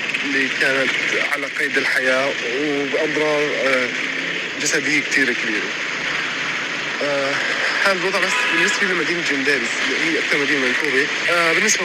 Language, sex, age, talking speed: Arabic, male, 20-39, 105 wpm